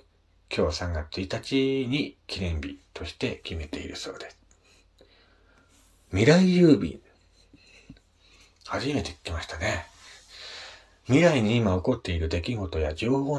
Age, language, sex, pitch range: 40-59, Japanese, male, 85-105 Hz